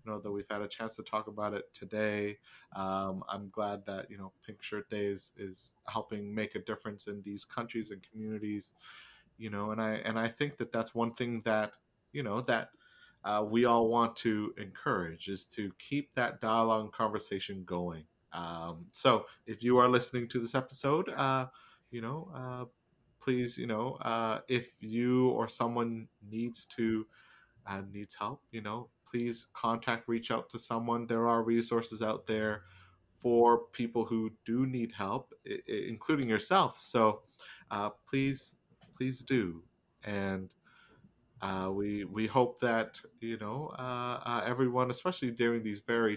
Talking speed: 170 wpm